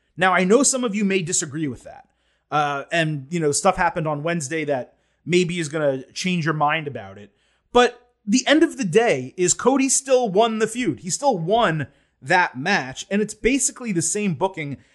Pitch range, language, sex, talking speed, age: 145-210 Hz, English, male, 205 wpm, 30-49